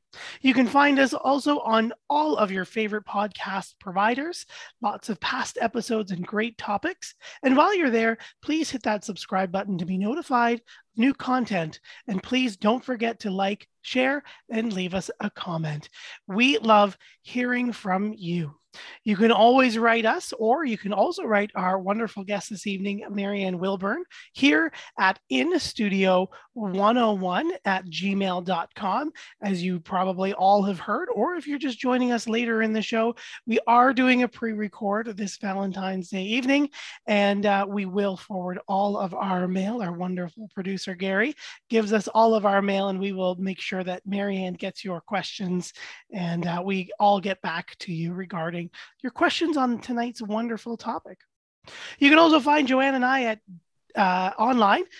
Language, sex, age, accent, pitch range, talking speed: English, male, 30-49, American, 195-245 Hz, 165 wpm